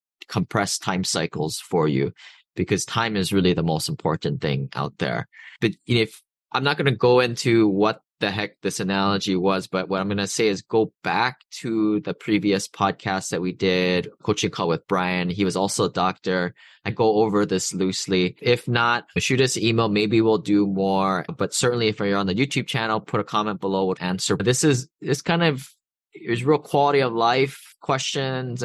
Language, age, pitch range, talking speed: English, 20-39, 95-120 Hz, 200 wpm